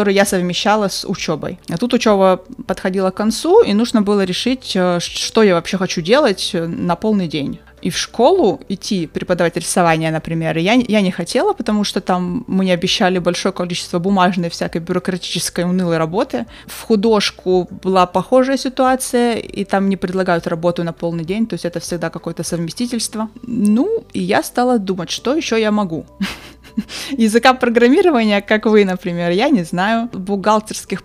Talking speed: 160 wpm